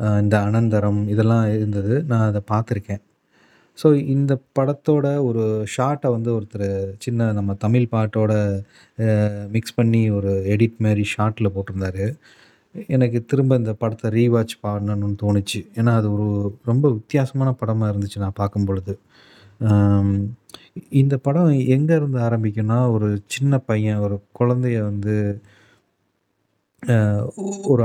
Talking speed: 115 wpm